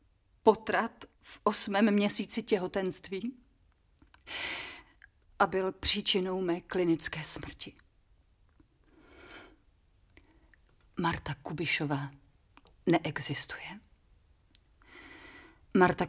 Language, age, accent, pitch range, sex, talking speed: Czech, 40-59, native, 140-215 Hz, female, 55 wpm